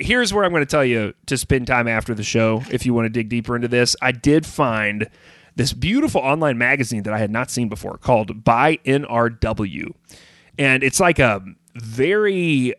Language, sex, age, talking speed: English, male, 30-49, 195 wpm